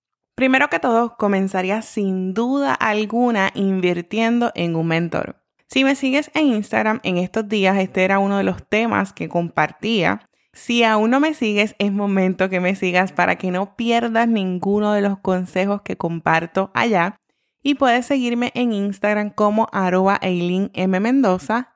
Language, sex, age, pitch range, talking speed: Spanish, female, 20-39, 185-235 Hz, 150 wpm